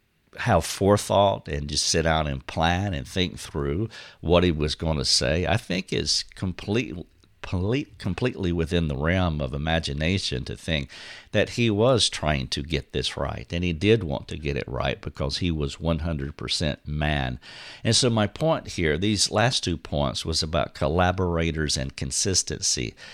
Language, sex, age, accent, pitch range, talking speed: English, male, 50-69, American, 80-105 Hz, 165 wpm